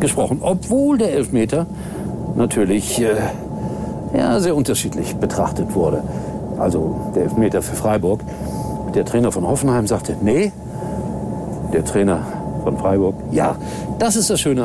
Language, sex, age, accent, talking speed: German, male, 60-79, German, 125 wpm